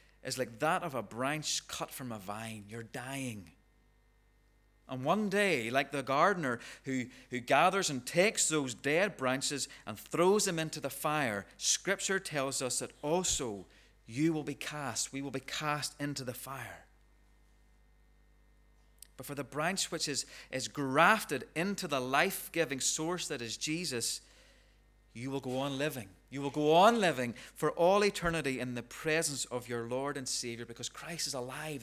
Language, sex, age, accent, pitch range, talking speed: English, male, 30-49, British, 125-170 Hz, 165 wpm